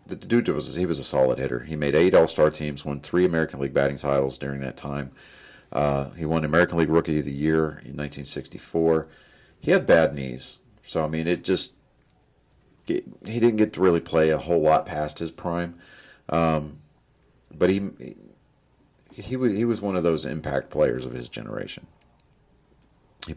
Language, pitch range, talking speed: English, 70-85 Hz, 175 wpm